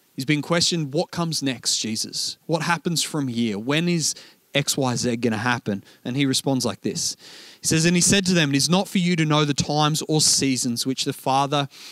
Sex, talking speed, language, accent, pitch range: male, 225 wpm, English, Australian, 125-155 Hz